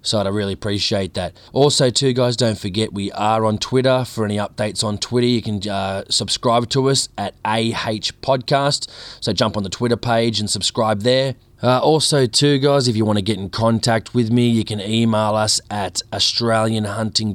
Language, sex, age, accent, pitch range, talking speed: English, male, 20-39, Australian, 105-120 Hz, 190 wpm